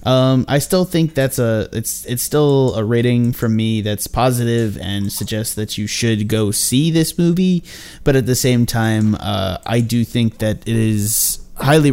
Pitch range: 110-140 Hz